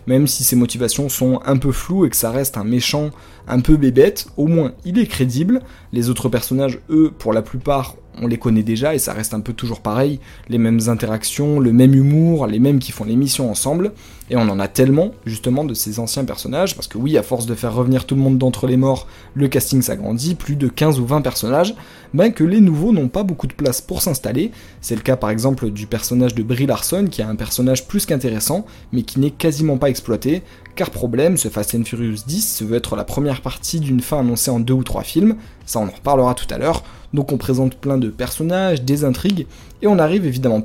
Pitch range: 120-145 Hz